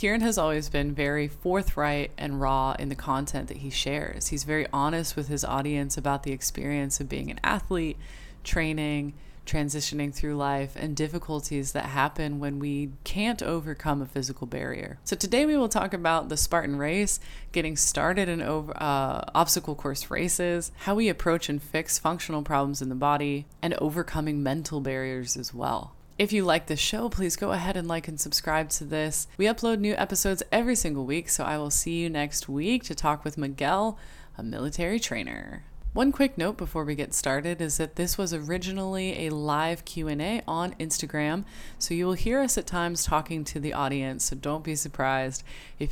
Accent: American